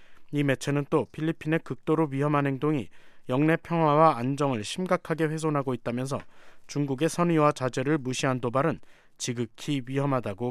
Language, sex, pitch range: Korean, male, 125-155 Hz